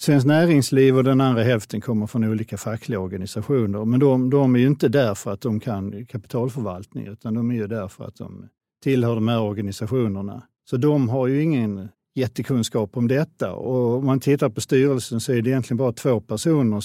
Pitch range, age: 110-140 Hz, 50-69